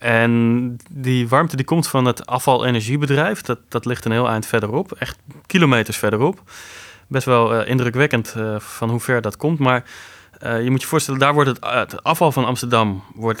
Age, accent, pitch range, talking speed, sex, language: 20-39, Dutch, 110-135 Hz, 195 wpm, male, Dutch